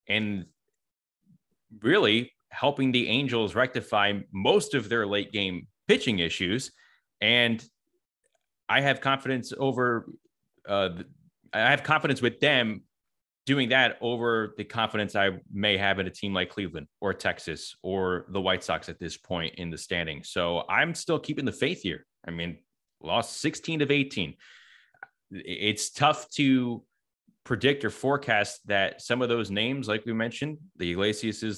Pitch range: 95-125 Hz